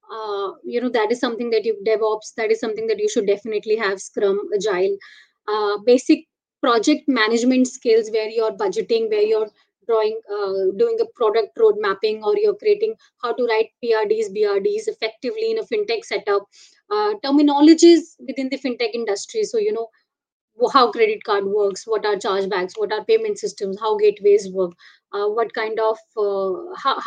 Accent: native